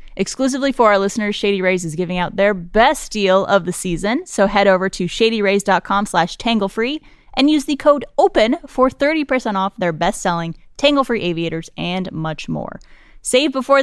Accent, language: American, English